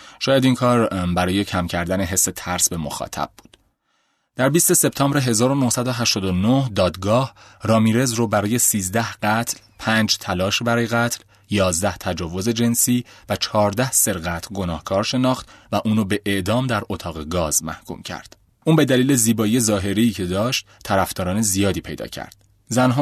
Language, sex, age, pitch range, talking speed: Persian, male, 30-49, 90-115 Hz, 140 wpm